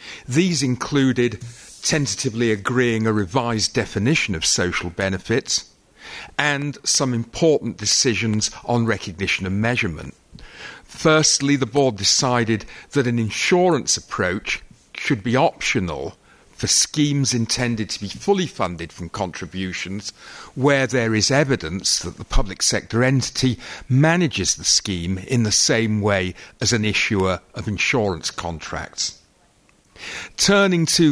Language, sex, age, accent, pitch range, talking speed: English, male, 50-69, British, 100-130 Hz, 120 wpm